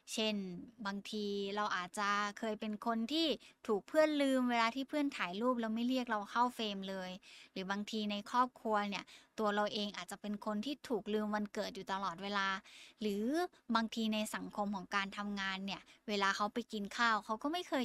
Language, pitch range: Thai, 200-235 Hz